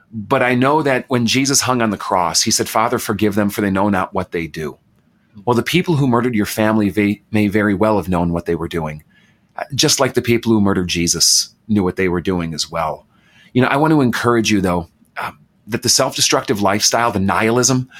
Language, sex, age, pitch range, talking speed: English, male, 40-59, 105-125 Hz, 225 wpm